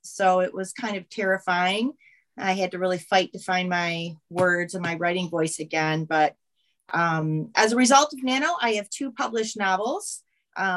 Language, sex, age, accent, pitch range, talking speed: English, female, 30-49, American, 180-230 Hz, 185 wpm